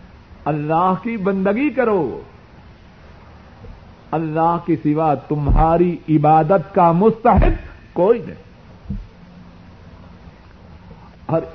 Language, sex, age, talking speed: Urdu, male, 60-79, 75 wpm